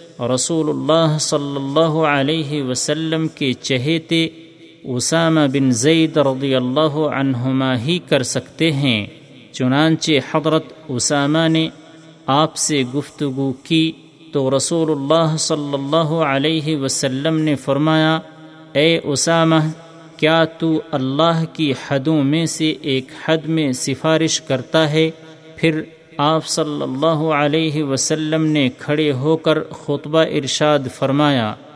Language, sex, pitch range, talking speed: Urdu, male, 140-160 Hz, 120 wpm